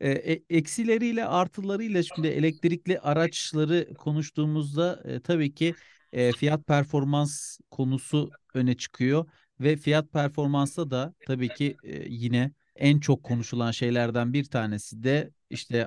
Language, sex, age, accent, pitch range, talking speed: Turkish, male, 40-59, native, 125-150 Hz, 120 wpm